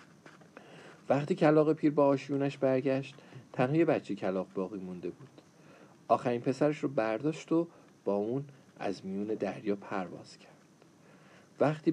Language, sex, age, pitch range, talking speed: Persian, male, 50-69, 120-155 Hz, 125 wpm